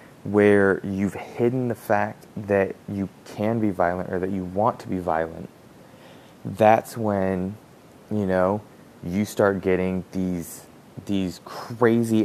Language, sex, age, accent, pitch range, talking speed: English, male, 20-39, American, 95-110 Hz, 130 wpm